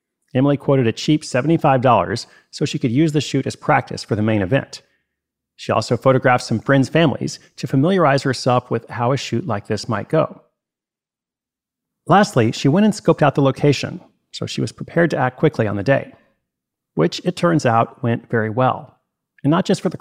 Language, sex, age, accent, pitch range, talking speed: English, male, 40-59, American, 120-155 Hz, 190 wpm